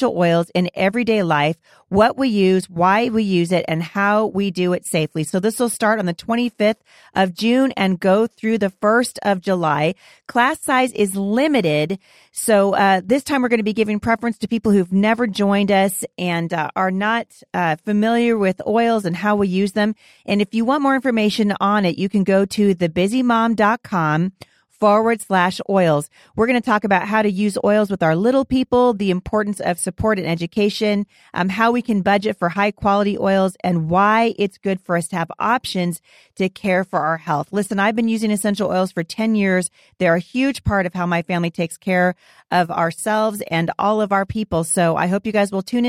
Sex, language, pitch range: female, English, 180-225 Hz